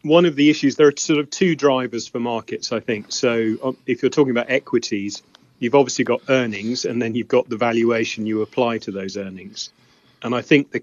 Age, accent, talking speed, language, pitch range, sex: 30-49, British, 215 wpm, English, 110-125 Hz, male